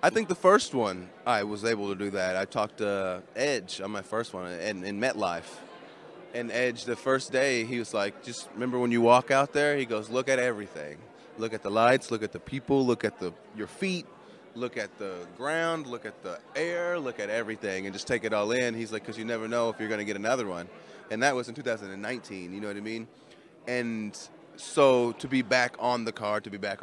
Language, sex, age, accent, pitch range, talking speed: English, male, 30-49, American, 105-130 Hz, 240 wpm